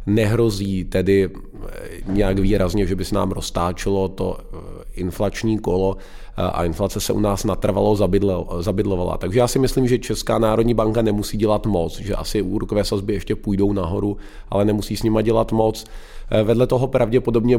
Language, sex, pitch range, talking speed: Czech, male, 95-110 Hz, 155 wpm